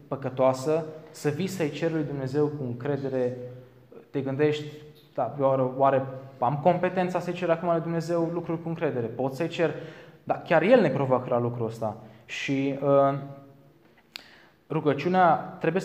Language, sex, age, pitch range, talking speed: Romanian, male, 20-39, 130-170 Hz, 150 wpm